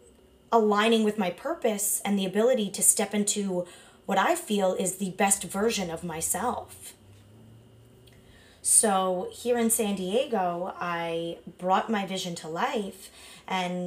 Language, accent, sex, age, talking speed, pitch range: English, American, female, 20-39, 135 wpm, 175-235 Hz